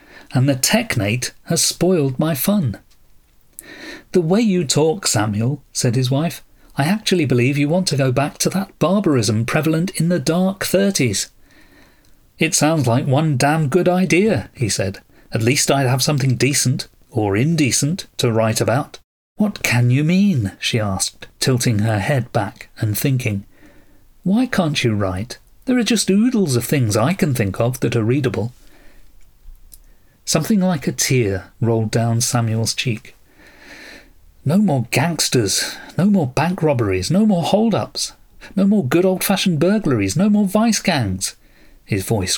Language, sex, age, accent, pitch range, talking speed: English, male, 40-59, British, 120-175 Hz, 155 wpm